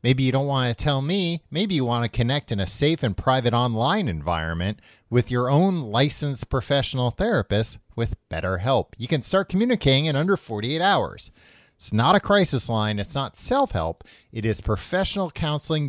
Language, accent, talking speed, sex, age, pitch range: English, American, 180 wpm, male, 30-49, 110-155 Hz